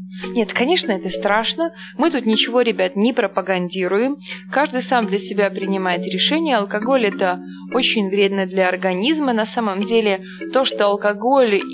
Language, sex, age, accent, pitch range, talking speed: Russian, female, 20-39, native, 195-275 Hz, 150 wpm